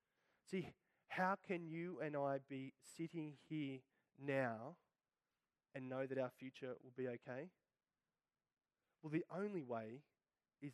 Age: 20-39